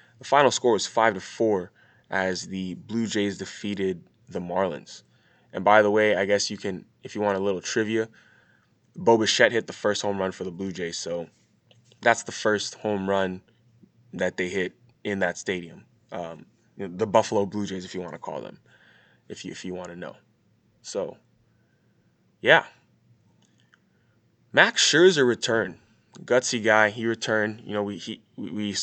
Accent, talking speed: American, 175 wpm